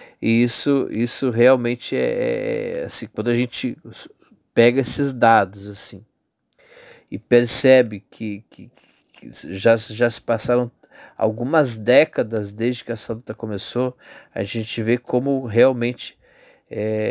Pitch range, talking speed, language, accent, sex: 110-125 Hz, 125 wpm, Portuguese, Brazilian, male